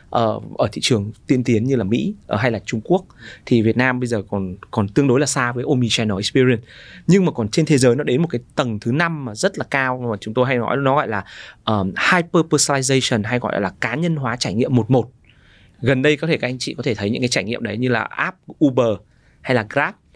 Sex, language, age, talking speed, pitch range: male, Vietnamese, 20-39, 255 wpm, 115-155 Hz